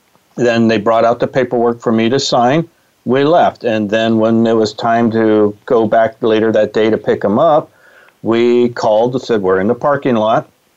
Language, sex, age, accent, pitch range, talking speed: English, male, 40-59, American, 110-125 Hz, 205 wpm